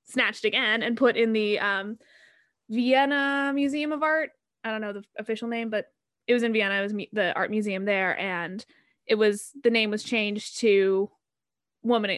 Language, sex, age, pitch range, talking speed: English, female, 20-39, 200-240 Hz, 180 wpm